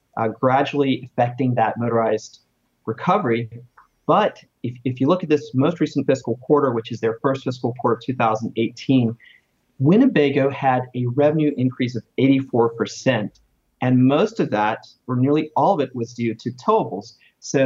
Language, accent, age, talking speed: English, American, 30-49, 155 wpm